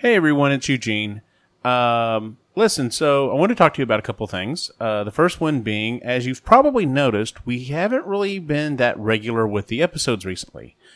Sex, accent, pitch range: male, American, 110-150 Hz